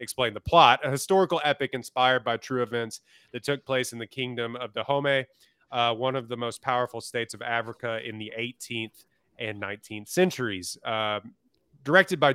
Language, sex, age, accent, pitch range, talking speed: English, male, 20-39, American, 115-135 Hz, 175 wpm